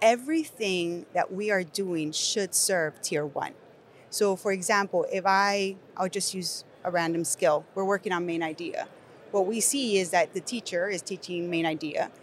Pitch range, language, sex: 170-210 Hz, English, female